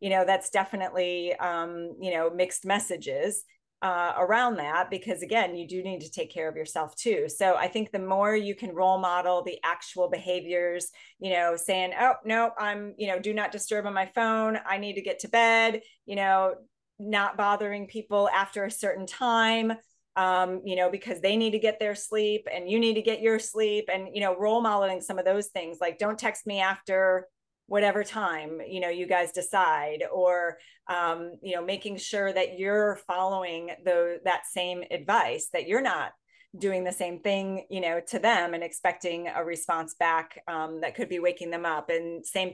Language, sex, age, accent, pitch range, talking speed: English, female, 30-49, American, 180-215 Hz, 200 wpm